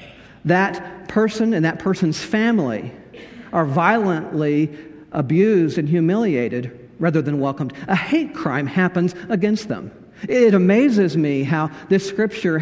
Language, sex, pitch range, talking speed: English, male, 160-215 Hz, 125 wpm